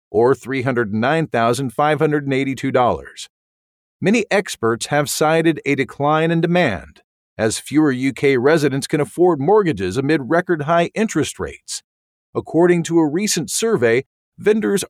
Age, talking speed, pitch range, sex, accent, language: 50-69, 115 wpm, 130-170 Hz, male, American, English